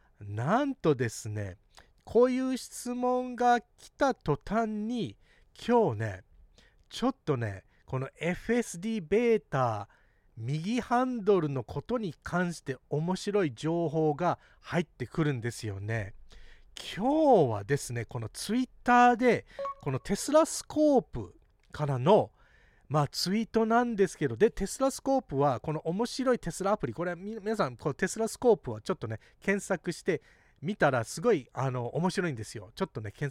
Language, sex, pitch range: Japanese, male, 130-220 Hz